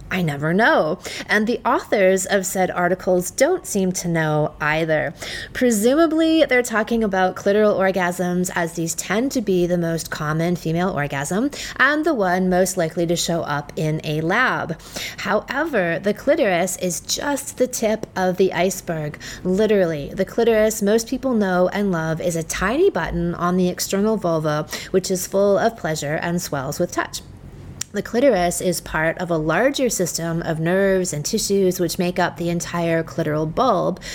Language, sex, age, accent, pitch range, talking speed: English, female, 30-49, American, 165-205 Hz, 165 wpm